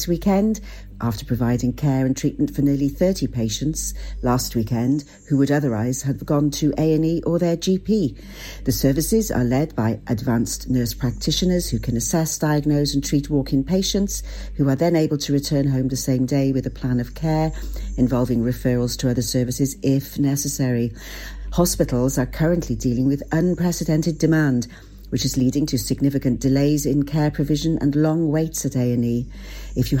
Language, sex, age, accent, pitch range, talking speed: English, female, 50-69, British, 125-155 Hz, 165 wpm